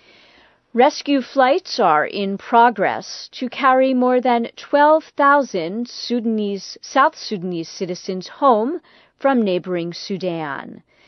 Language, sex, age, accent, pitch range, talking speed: English, female, 40-59, American, 180-255 Hz, 95 wpm